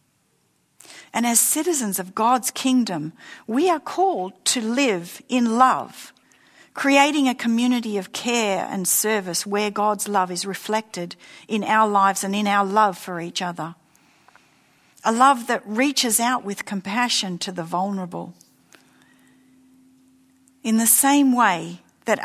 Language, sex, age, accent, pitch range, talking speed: English, female, 50-69, Australian, 185-240 Hz, 135 wpm